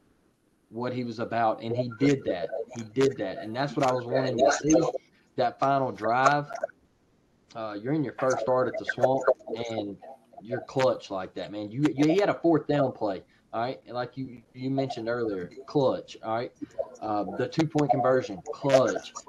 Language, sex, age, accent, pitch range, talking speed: English, male, 20-39, American, 115-140 Hz, 185 wpm